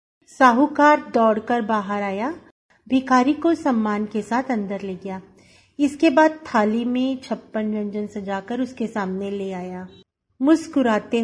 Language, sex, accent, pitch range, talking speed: Hindi, female, native, 205-270 Hz, 130 wpm